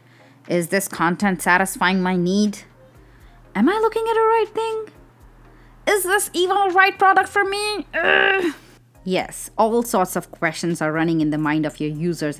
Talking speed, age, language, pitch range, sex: 170 wpm, 20-39, English, 160-220 Hz, female